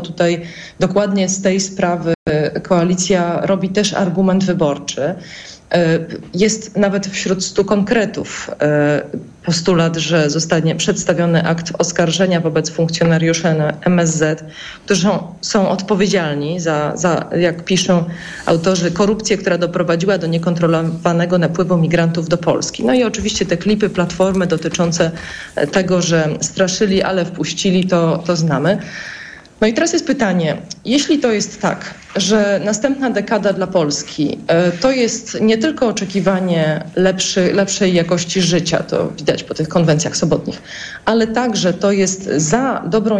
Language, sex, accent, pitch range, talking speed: Polish, female, native, 165-205 Hz, 125 wpm